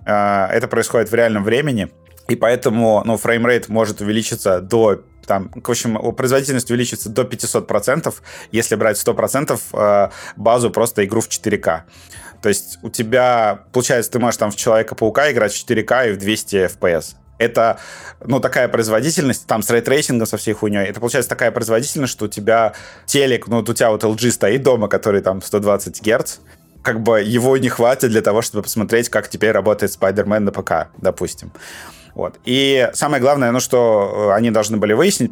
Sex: male